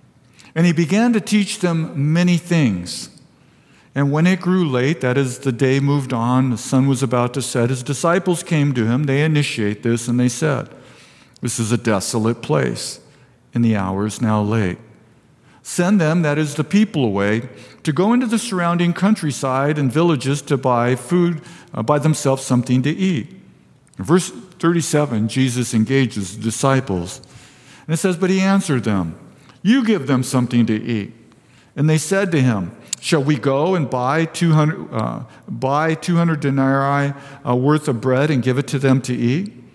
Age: 50-69